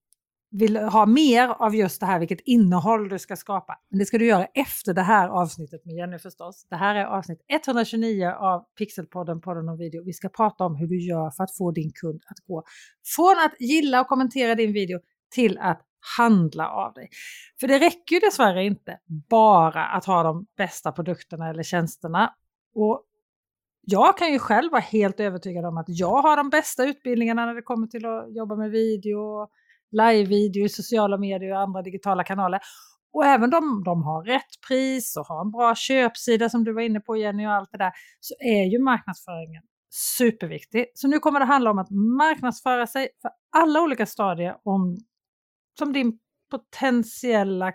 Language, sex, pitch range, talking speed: Swedish, female, 185-245 Hz, 185 wpm